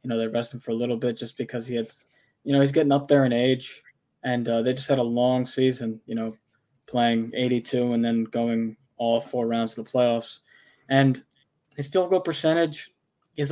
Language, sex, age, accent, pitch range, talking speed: English, male, 20-39, American, 115-135 Hz, 210 wpm